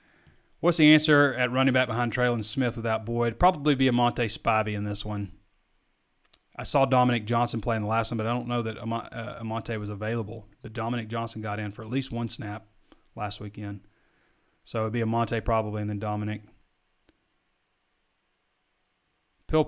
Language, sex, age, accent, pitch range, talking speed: English, male, 30-49, American, 105-125 Hz, 180 wpm